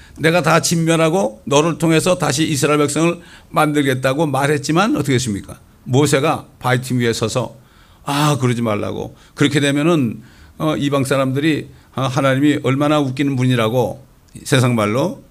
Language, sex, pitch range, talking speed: English, male, 125-160 Hz, 120 wpm